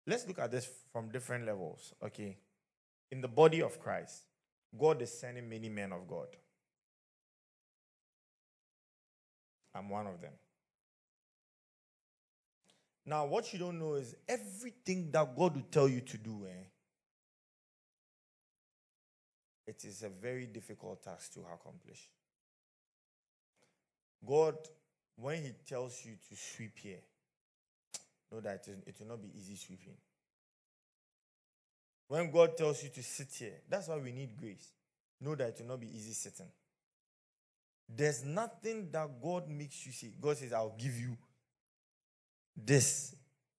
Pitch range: 110-150 Hz